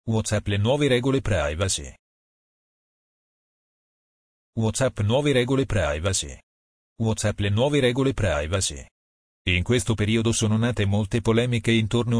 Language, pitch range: Italian, 100-120 Hz